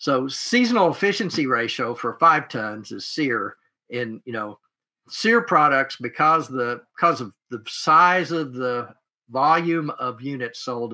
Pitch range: 120-165 Hz